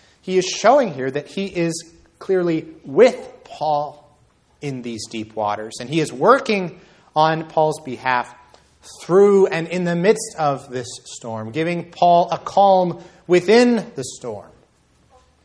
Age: 30-49